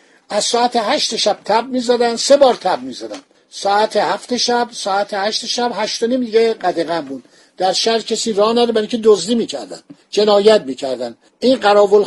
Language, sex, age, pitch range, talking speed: Persian, male, 50-69, 180-235 Hz, 160 wpm